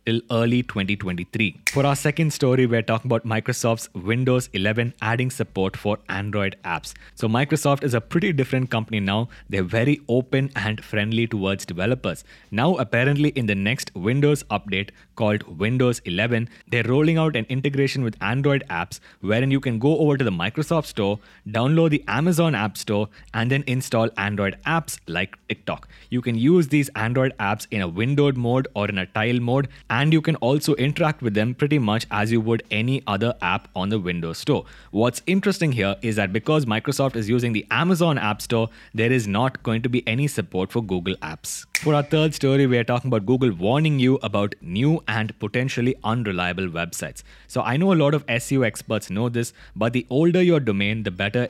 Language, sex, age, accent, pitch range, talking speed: English, male, 20-39, Indian, 105-140 Hz, 190 wpm